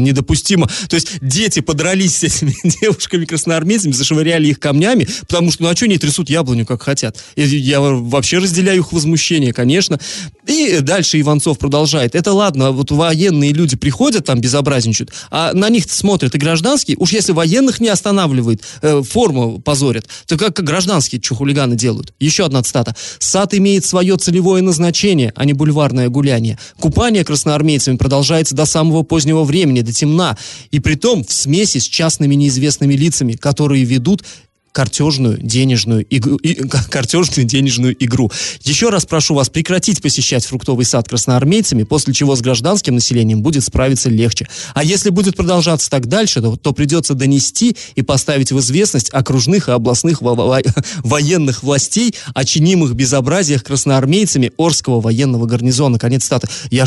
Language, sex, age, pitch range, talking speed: Russian, male, 20-39, 130-170 Hz, 155 wpm